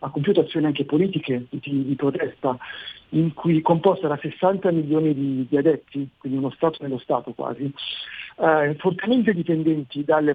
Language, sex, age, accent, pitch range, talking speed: Italian, male, 50-69, native, 135-170 Hz, 155 wpm